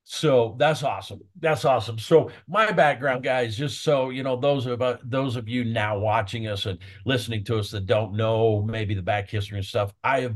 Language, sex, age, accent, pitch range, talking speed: English, male, 50-69, American, 105-120 Hz, 215 wpm